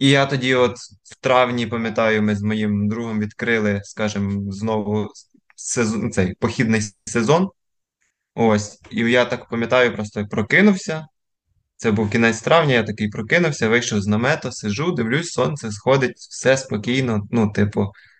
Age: 20-39